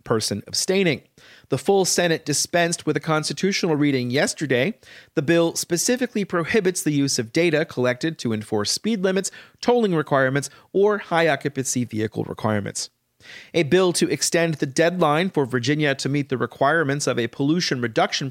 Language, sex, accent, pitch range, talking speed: English, male, American, 130-180 Hz, 155 wpm